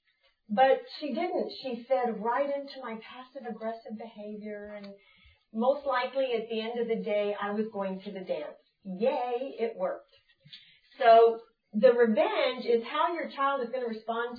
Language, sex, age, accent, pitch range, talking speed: English, female, 40-59, American, 205-255 Hz, 165 wpm